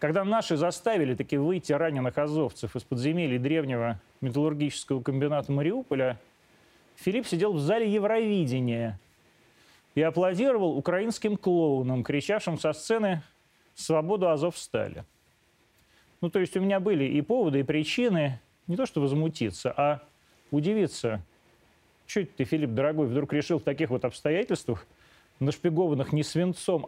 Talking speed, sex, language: 130 wpm, male, Russian